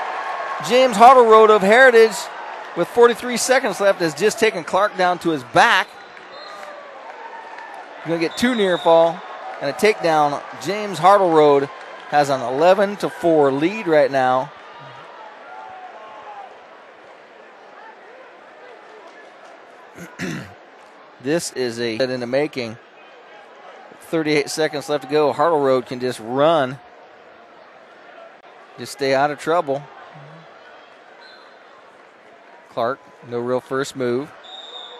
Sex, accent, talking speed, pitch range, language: male, American, 110 wpm, 130-165 Hz, English